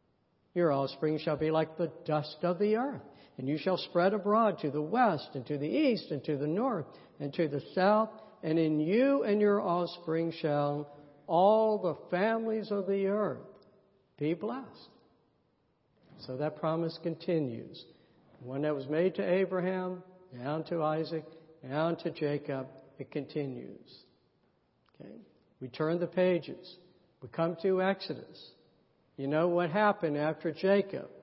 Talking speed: 150 wpm